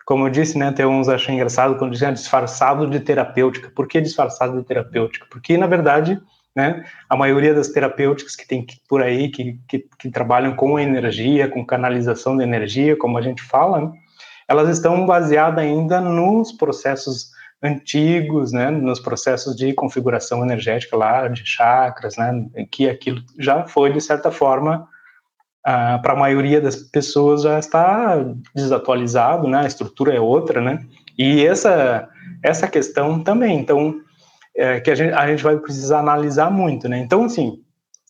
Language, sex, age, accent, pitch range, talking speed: Portuguese, male, 20-39, Brazilian, 130-165 Hz, 165 wpm